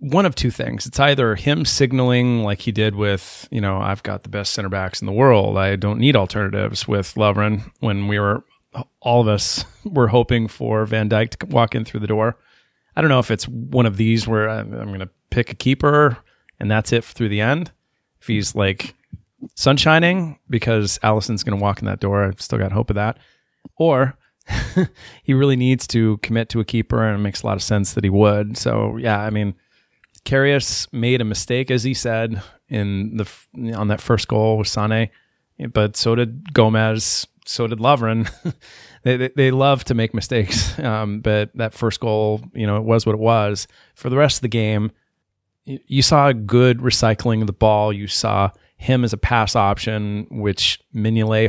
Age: 30-49